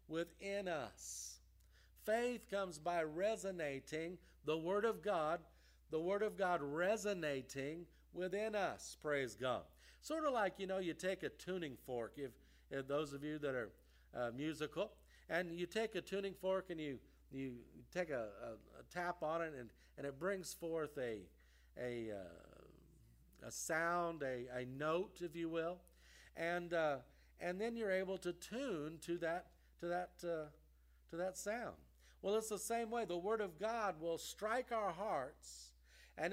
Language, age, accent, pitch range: English, 50-69, American, 135-200 Hz